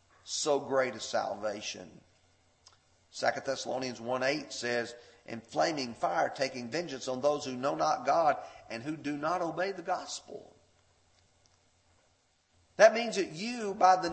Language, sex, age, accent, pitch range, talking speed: English, male, 40-59, American, 105-150 Hz, 135 wpm